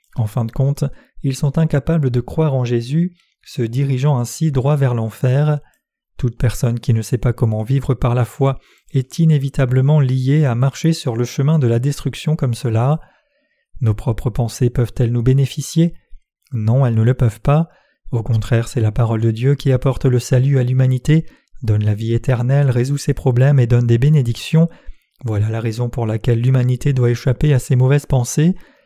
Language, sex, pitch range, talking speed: French, male, 120-145 Hz, 185 wpm